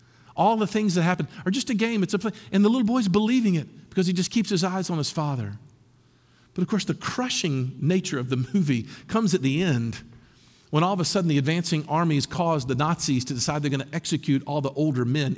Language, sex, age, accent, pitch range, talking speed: English, male, 50-69, American, 130-205 Hz, 240 wpm